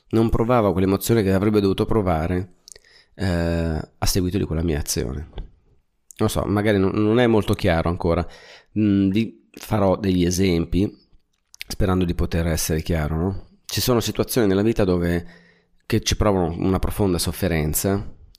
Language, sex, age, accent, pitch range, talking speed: Italian, male, 30-49, native, 85-105 Hz, 150 wpm